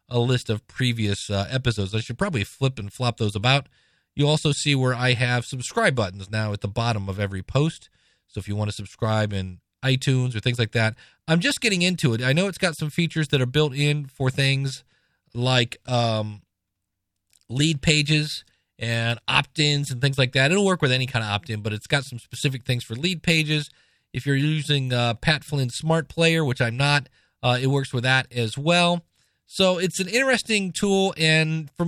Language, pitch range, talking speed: English, 115-155 Hz, 205 wpm